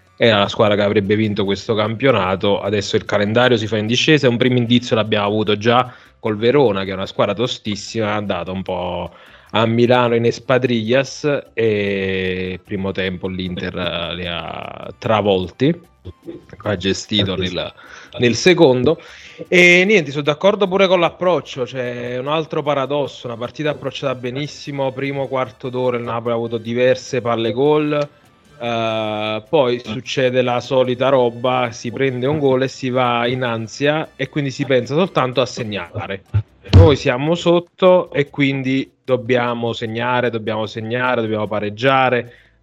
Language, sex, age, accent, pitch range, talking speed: Italian, male, 20-39, native, 110-135 Hz, 150 wpm